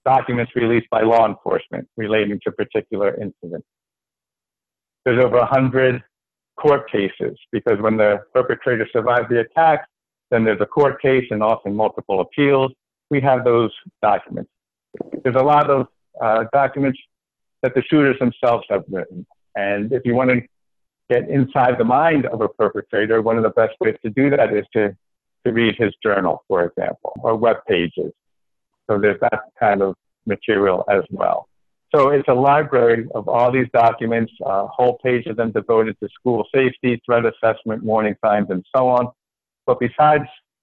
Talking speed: 165 wpm